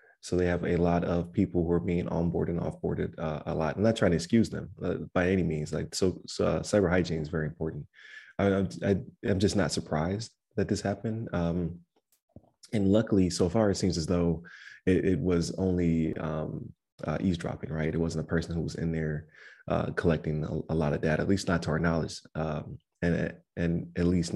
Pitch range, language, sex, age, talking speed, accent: 80-90 Hz, English, male, 20-39, 215 wpm, American